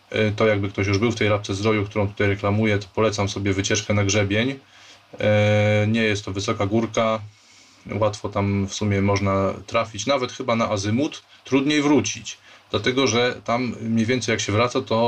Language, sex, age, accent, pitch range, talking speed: Polish, male, 20-39, native, 105-120 Hz, 175 wpm